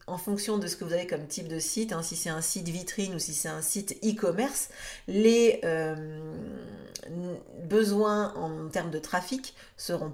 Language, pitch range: French, 170-220 Hz